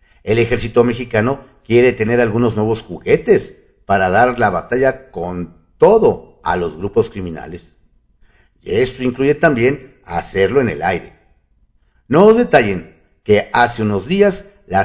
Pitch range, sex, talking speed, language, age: 95-130 Hz, male, 135 wpm, Spanish, 50-69